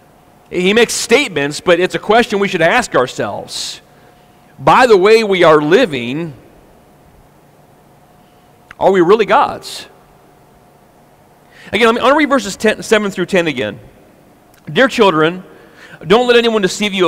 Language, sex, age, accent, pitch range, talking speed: English, male, 40-59, American, 155-220 Hz, 135 wpm